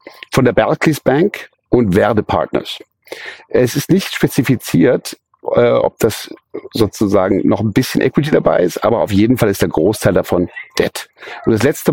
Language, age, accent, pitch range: German, 50-69, German, 110-155 Hz